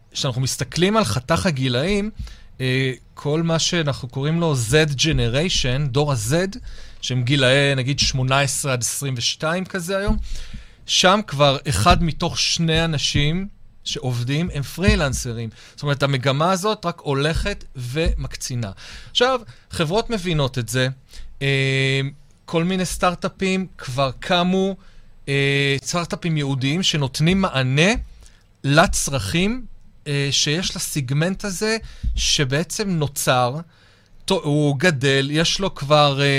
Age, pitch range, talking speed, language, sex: 40-59, 130-175 Hz, 100 wpm, Hebrew, male